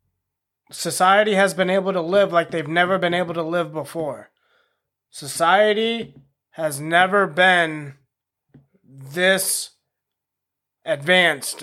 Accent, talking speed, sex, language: American, 105 wpm, male, English